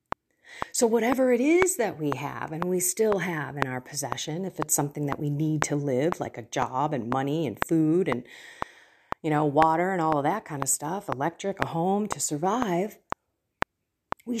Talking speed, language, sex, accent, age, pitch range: 190 wpm, English, female, American, 40-59, 155-215 Hz